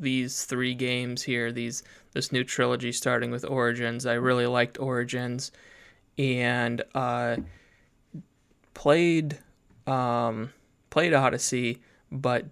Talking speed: 105 wpm